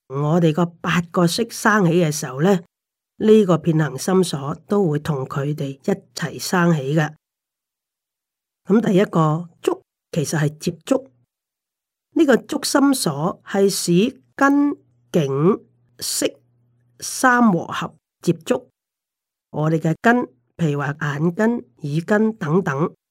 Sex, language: female, Chinese